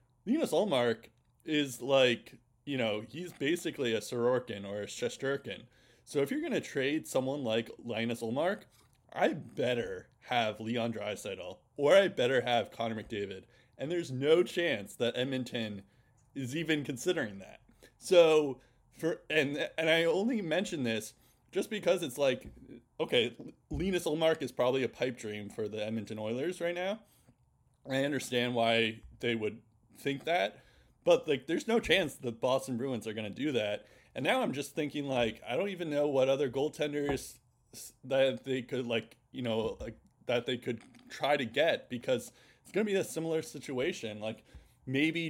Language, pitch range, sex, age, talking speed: English, 115-150 Hz, male, 20-39, 165 wpm